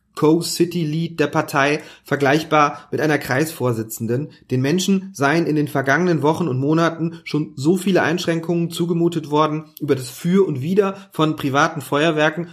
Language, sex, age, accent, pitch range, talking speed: German, male, 30-49, German, 135-165 Hz, 145 wpm